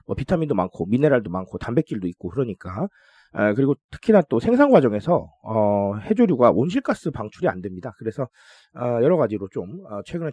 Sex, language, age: male, Korean, 30-49